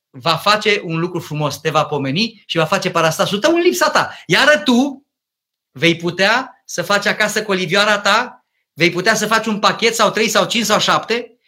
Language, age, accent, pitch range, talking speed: Romanian, 30-49, native, 170-235 Hz, 200 wpm